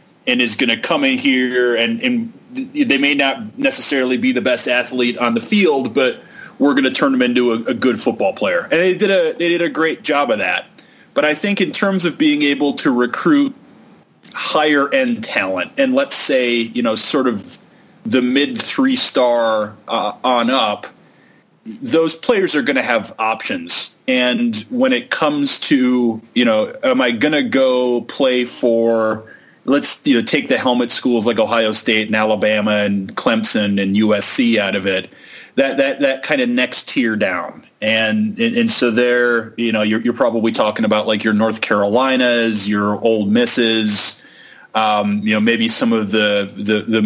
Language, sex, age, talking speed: English, male, 30-49, 185 wpm